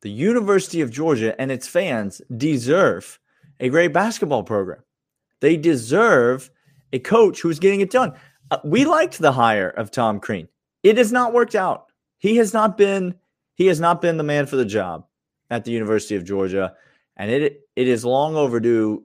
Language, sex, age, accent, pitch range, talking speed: English, male, 30-49, American, 110-155 Hz, 180 wpm